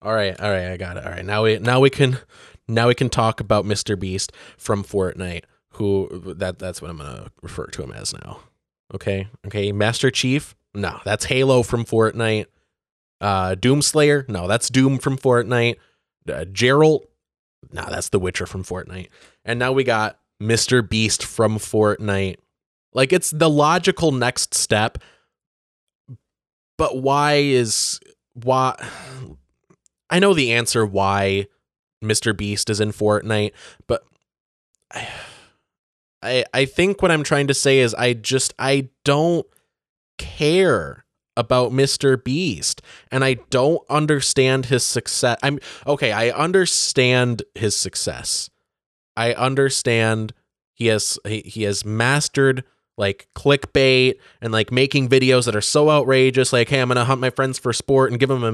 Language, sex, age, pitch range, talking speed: English, male, 20-39, 105-135 Hz, 150 wpm